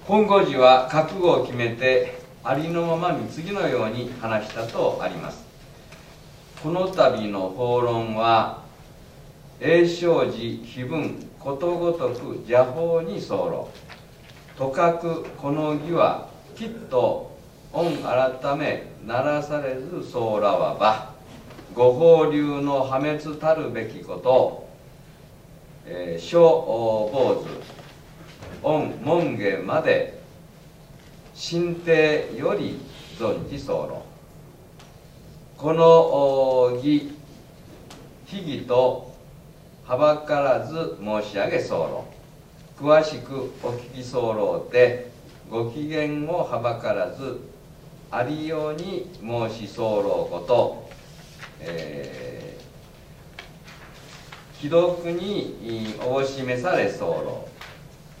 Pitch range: 125-165 Hz